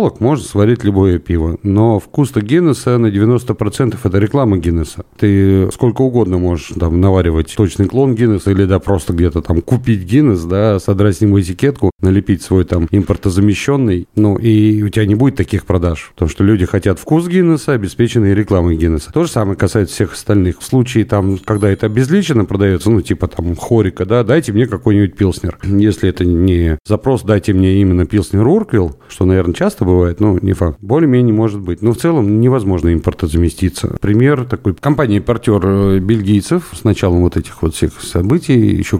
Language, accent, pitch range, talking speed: Russian, native, 90-115 Hz, 175 wpm